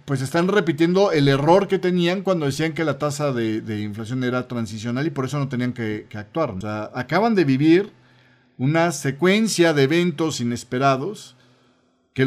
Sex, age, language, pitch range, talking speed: male, 40-59, Spanish, 125-175 Hz, 175 wpm